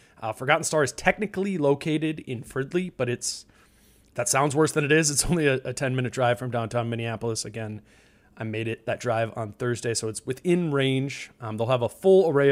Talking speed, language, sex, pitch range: 210 wpm, English, male, 120-145 Hz